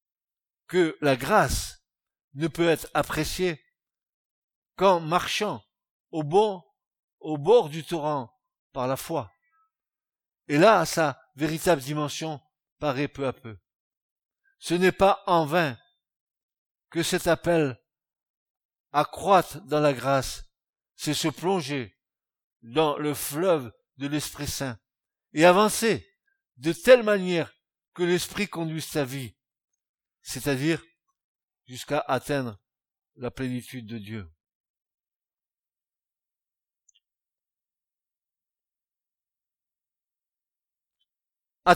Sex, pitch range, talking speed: male, 135-195 Hz, 95 wpm